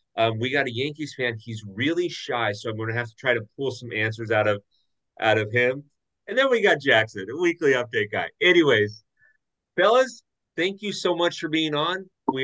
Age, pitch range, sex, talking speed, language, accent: 30-49, 110-150 Hz, male, 210 wpm, English, American